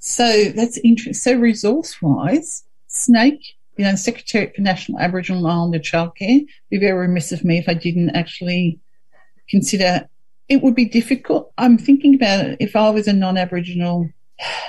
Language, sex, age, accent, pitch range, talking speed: English, female, 50-69, Australian, 170-210 Hz, 160 wpm